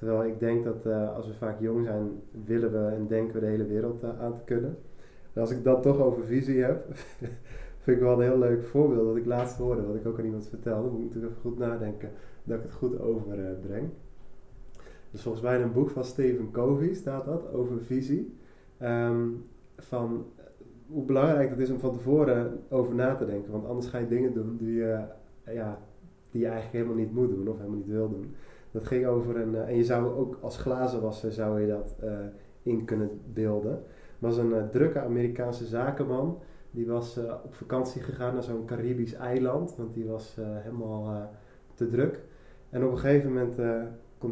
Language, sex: Dutch, male